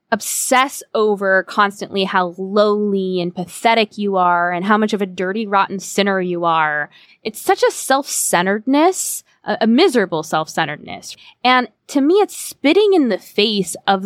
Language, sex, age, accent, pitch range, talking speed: English, female, 20-39, American, 170-230 Hz, 155 wpm